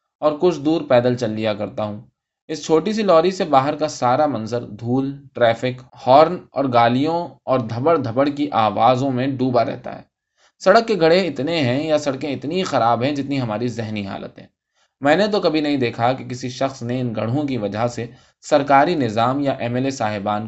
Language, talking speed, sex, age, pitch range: Urdu, 200 wpm, male, 20-39, 110-145 Hz